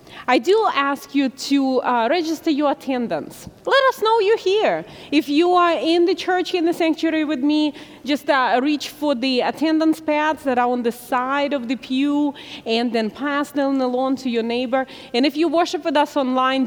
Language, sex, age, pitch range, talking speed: English, female, 30-49, 235-310 Hz, 200 wpm